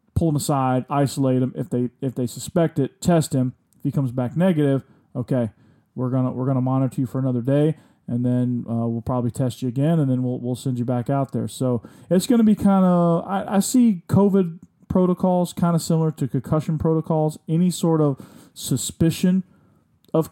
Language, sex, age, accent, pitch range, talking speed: English, male, 40-59, American, 130-160 Hz, 200 wpm